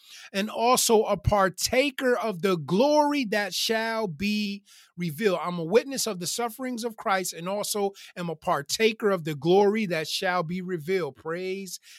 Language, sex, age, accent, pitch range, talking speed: English, male, 30-49, American, 190-240 Hz, 160 wpm